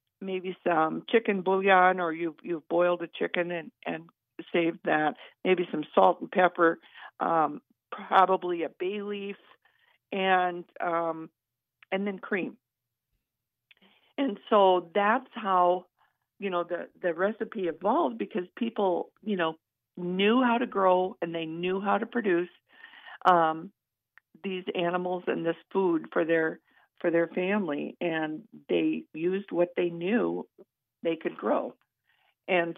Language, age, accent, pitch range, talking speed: English, 50-69, American, 170-210 Hz, 135 wpm